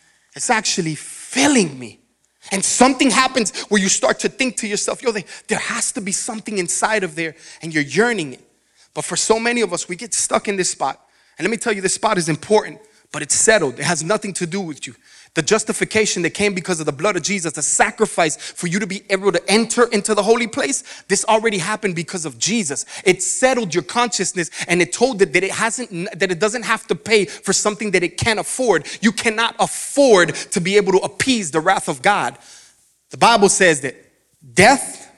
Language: English